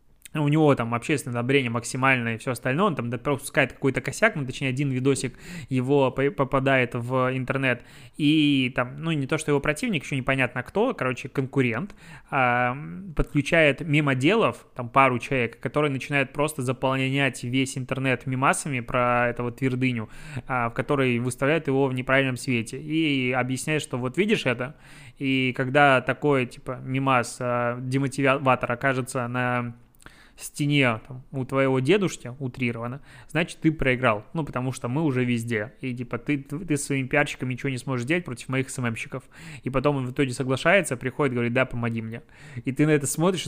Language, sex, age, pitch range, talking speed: Russian, male, 20-39, 125-145 Hz, 165 wpm